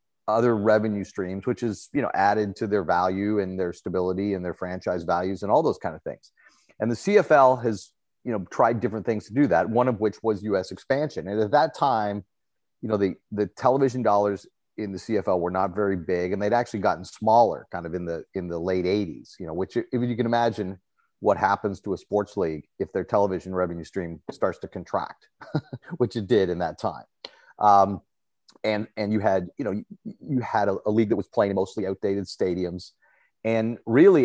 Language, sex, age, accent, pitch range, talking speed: English, male, 30-49, American, 95-120 Hz, 210 wpm